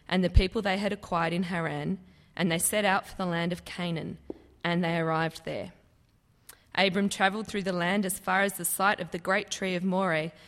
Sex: female